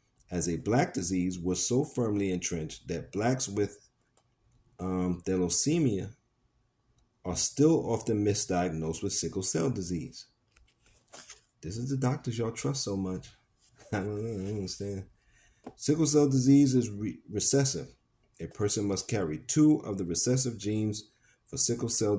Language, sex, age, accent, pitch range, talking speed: English, male, 40-59, American, 90-120 Hz, 135 wpm